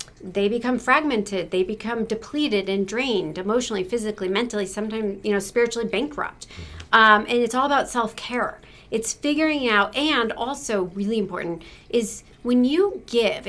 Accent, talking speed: American, 145 wpm